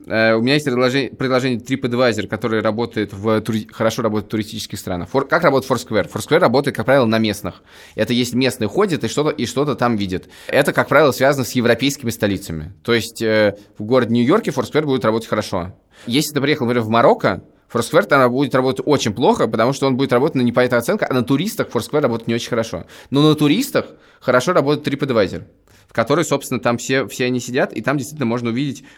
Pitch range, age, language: 110-130 Hz, 20-39, Russian